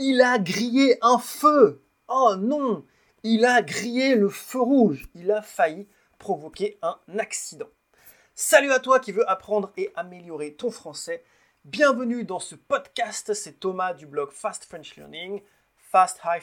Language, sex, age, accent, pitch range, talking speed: English, male, 30-49, French, 170-245 Hz, 150 wpm